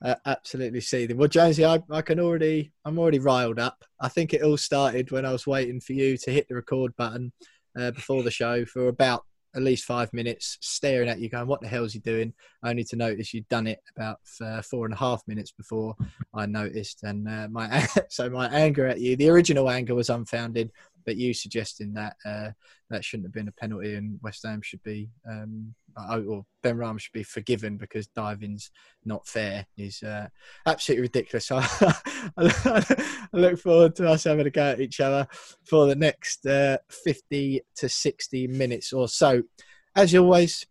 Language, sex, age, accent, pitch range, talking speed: English, male, 20-39, British, 120-155 Hz, 200 wpm